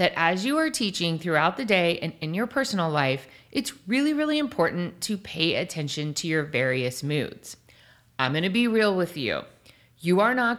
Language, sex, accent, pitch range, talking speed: English, female, American, 160-235 Hz, 195 wpm